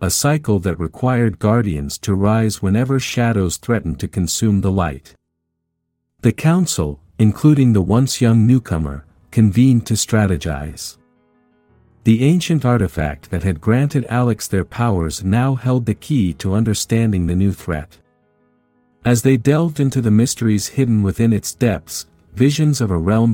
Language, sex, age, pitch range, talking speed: English, male, 50-69, 90-120 Hz, 145 wpm